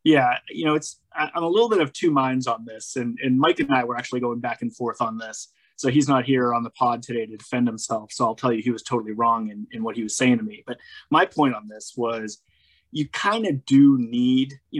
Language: English